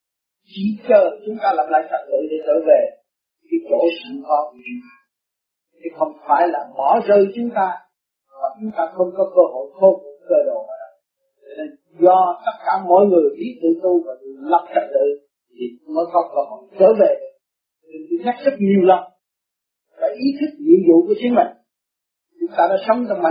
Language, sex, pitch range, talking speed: Vietnamese, male, 165-260 Hz, 135 wpm